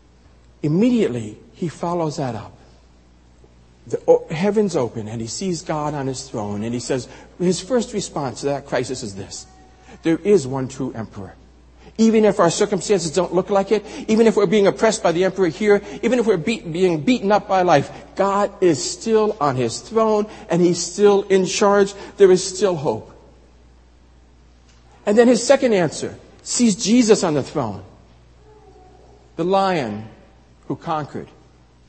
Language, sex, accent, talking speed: English, male, American, 160 wpm